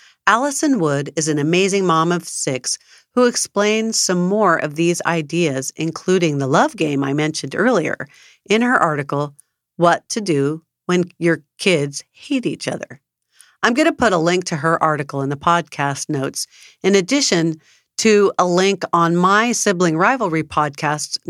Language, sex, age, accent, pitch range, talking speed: English, female, 50-69, American, 145-175 Hz, 160 wpm